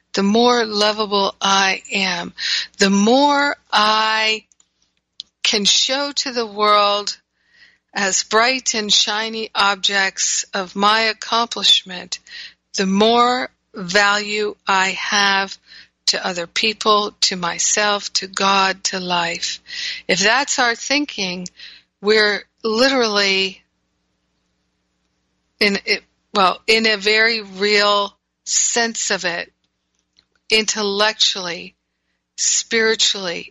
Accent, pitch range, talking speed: American, 180-220 Hz, 95 wpm